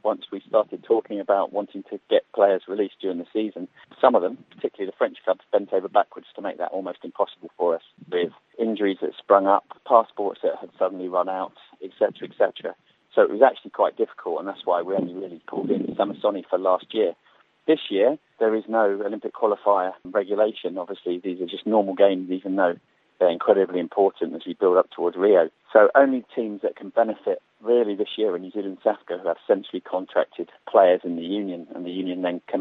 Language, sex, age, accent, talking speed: English, male, 30-49, British, 210 wpm